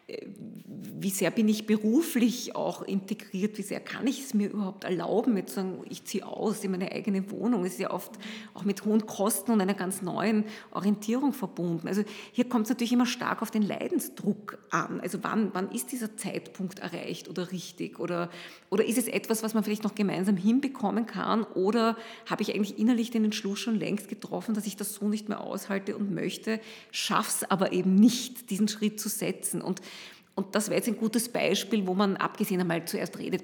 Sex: female